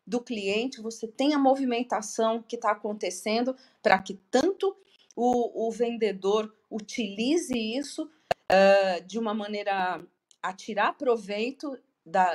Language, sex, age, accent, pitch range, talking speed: Portuguese, female, 40-59, Brazilian, 205-275 Hz, 120 wpm